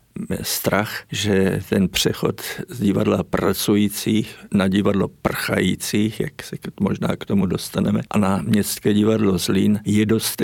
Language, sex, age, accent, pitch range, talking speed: Czech, male, 50-69, native, 95-110 Hz, 130 wpm